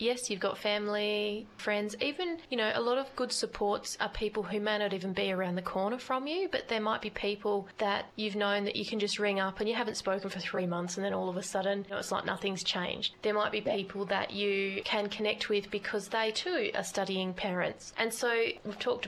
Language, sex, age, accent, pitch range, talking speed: English, female, 20-39, Australian, 195-225 Hz, 240 wpm